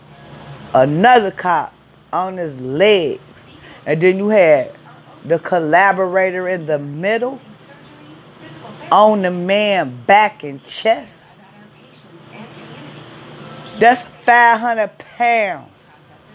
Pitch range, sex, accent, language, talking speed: 165-225 Hz, female, American, English, 85 wpm